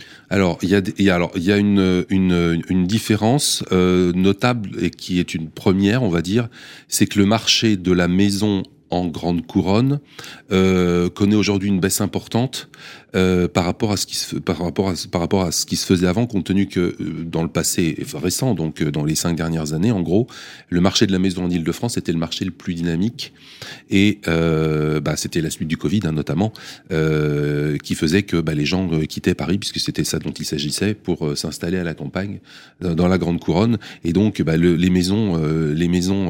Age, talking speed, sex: 40-59, 215 wpm, male